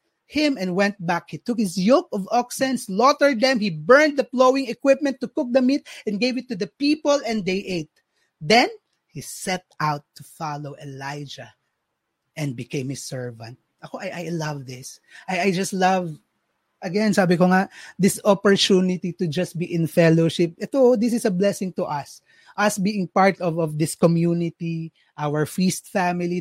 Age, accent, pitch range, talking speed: 20-39, native, 170-235 Hz, 175 wpm